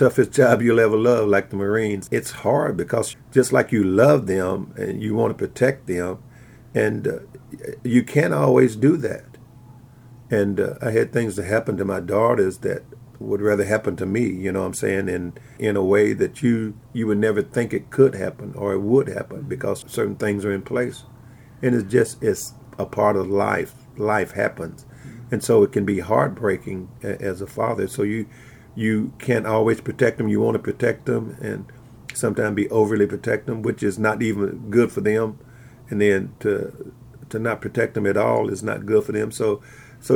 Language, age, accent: English, 50-69, American